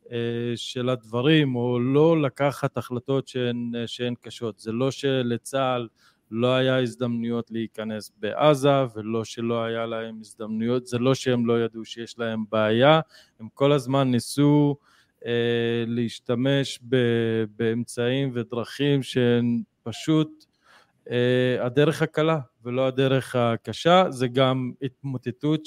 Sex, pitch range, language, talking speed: male, 115-140 Hz, Hebrew, 120 wpm